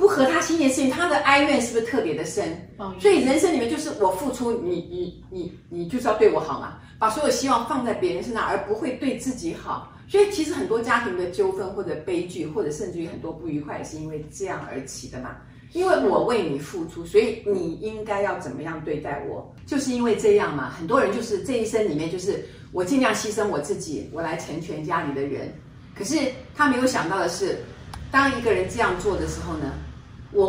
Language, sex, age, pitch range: Chinese, female, 40-59, 165-275 Hz